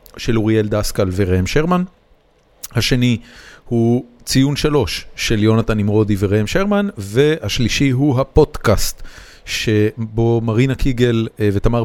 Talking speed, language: 105 wpm, Hebrew